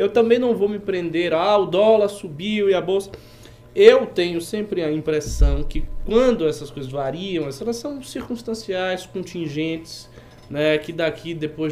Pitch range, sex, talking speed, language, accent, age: 125-200 Hz, male, 160 wpm, Portuguese, Brazilian, 20-39